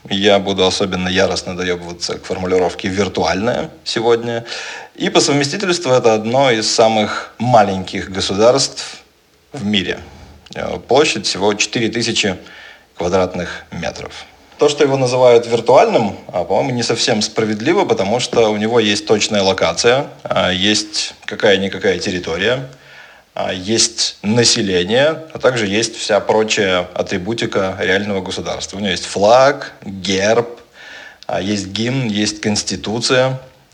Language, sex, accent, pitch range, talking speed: Russian, male, native, 95-120 Hz, 110 wpm